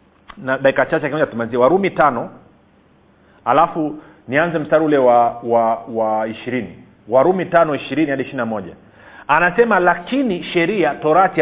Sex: male